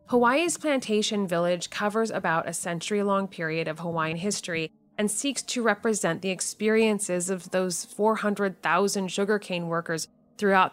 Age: 30-49